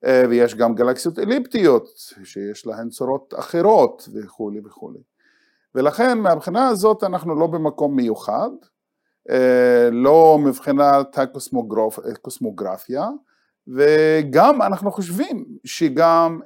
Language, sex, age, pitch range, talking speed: Hebrew, male, 50-69, 125-195 Hz, 90 wpm